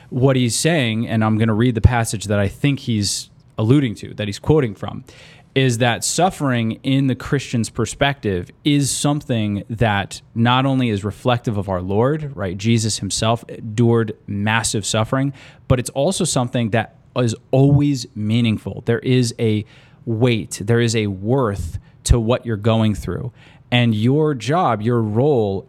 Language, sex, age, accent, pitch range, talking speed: English, male, 20-39, American, 110-130 Hz, 160 wpm